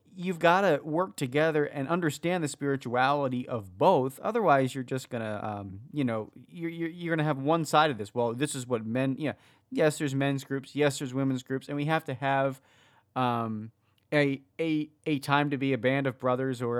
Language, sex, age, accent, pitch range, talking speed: English, male, 30-49, American, 120-145 Hz, 210 wpm